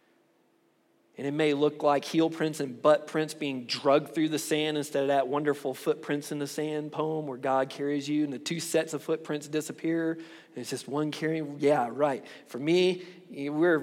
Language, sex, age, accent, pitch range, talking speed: English, male, 40-59, American, 135-155 Hz, 195 wpm